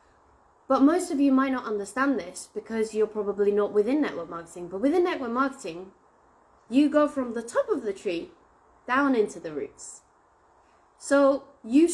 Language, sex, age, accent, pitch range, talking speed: English, female, 20-39, British, 225-335 Hz, 165 wpm